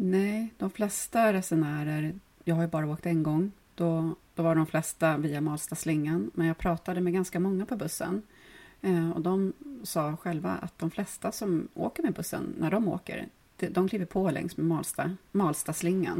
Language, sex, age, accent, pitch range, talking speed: Swedish, female, 30-49, native, 150-175 Hz, 175 wpm